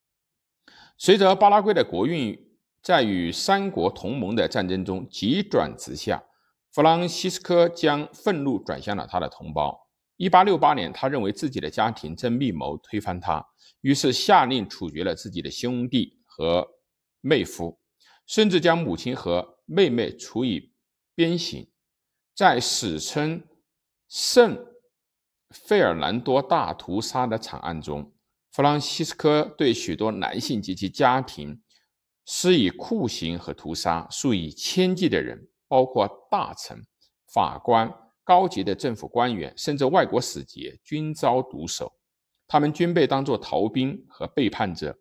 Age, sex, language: 50-69, male, Chinese